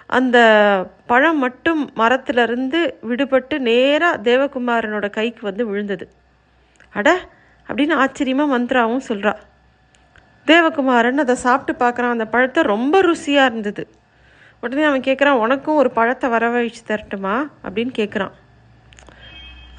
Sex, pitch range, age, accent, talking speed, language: female, 225-285 Hz, 30-49, native, 105 wpm, Tamil